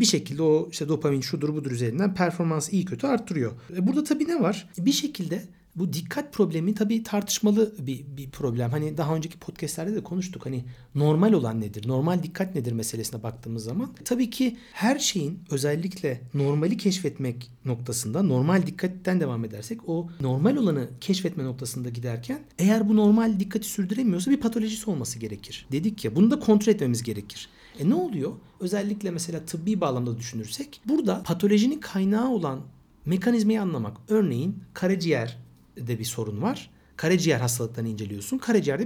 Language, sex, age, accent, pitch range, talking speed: Turkish, male, 60-79, native, 130-205 Hz, 155 wpm